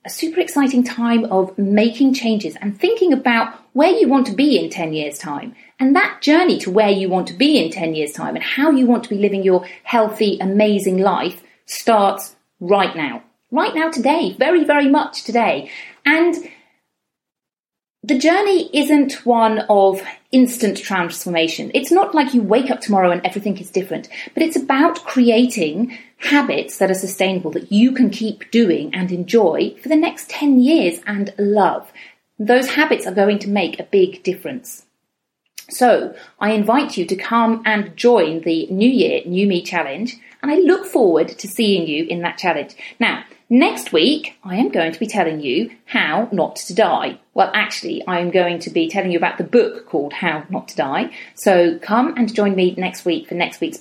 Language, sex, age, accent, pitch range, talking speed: English, female, 40-59, British, 190-280 Hz, 185 wpm